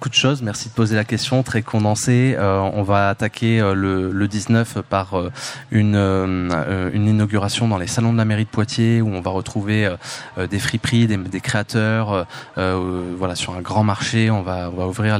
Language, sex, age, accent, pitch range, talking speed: French, male, 20-39, French, 100-120 Hz, 190 wpm